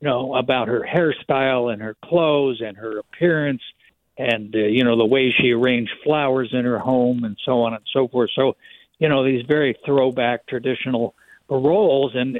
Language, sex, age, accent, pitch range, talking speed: English, male, 60-79, American, 120-145 Hz, 185 wpm